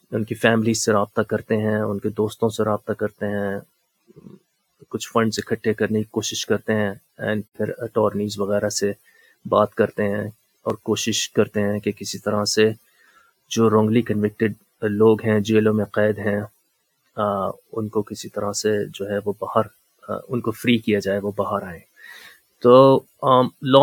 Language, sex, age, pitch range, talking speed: Urdu, male, 30-49, 105-120 Hz, 170 wpm